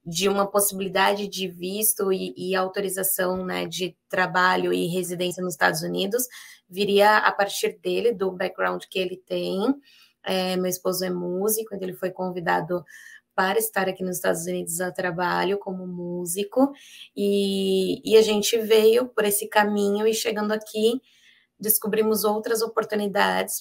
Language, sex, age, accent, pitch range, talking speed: Portuguese, female, 20-39, Brazilian, 185-210 Hz, 145 wpm